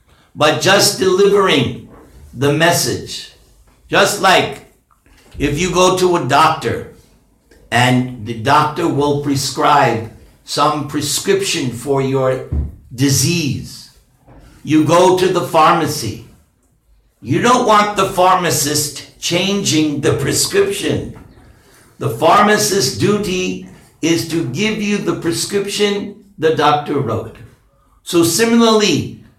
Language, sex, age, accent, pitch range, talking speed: English, male, 60-79, American, 120-180 Hz, 100 wpm